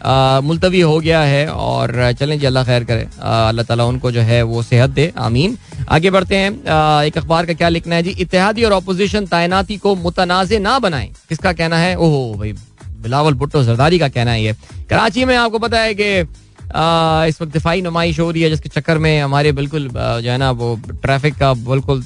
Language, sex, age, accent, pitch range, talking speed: Hindi, male, 20-39, native, 135-185 Hz, 200 wpm